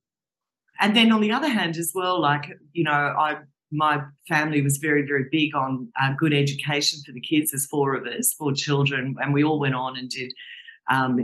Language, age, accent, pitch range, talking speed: English, 40-59, Australian, 135-170 Hz, 210 wpm